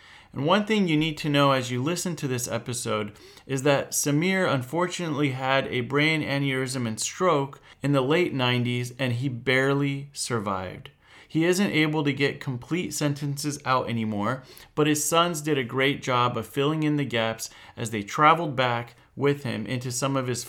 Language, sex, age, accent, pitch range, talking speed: English, male, 30-49, American, 120-150 Hz, 180 wpm